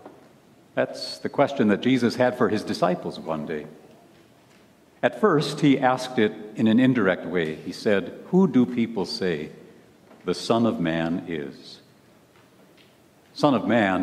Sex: male